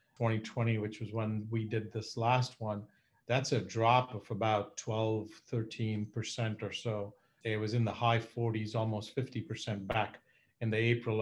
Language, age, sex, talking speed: English, 50-69, male, 160 wpm